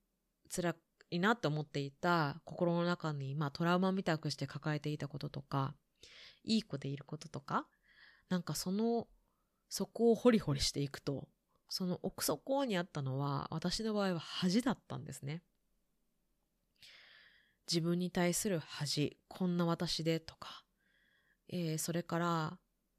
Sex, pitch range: female, 155-210 Hz